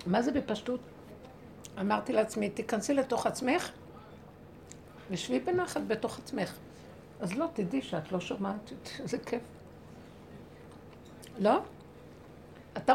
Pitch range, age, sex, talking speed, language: 195-270 Hz, 60-79, female, 100 wpm, Hebrew